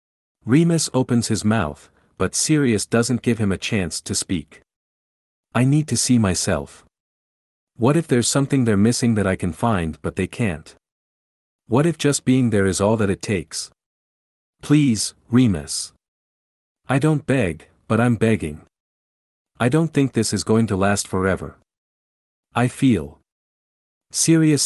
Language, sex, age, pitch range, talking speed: English, male, 50-69, 80-125 Hz, 150 wpm